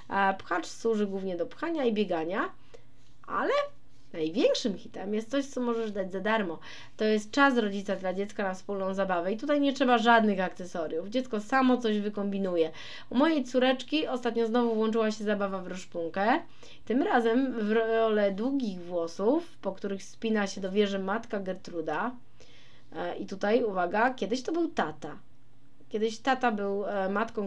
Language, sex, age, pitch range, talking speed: Polish, female, 20-39, 190-230 Hz, 155 wpm